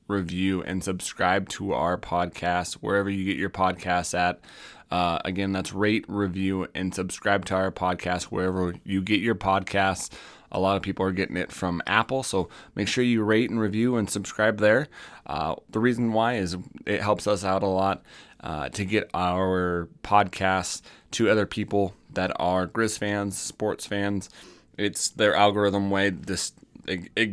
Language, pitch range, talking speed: English, 95-110 Hz, 170 wpm